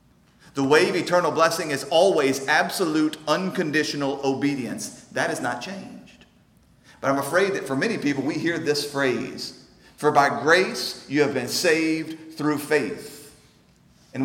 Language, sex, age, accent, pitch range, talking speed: English, male, 40-59, American, 135-165 Hz, 145 wpm